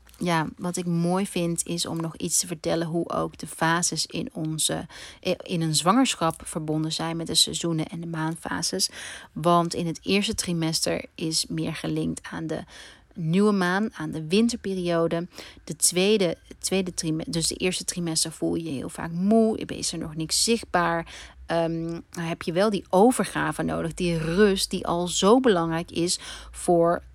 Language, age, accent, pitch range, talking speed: Dutch, 30-49, Dutch, 160-190 Hz, 170 wpm